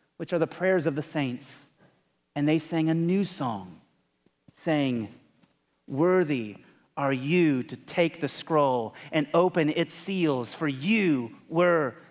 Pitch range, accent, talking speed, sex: 145-205 Hz, American, 140 wpm, male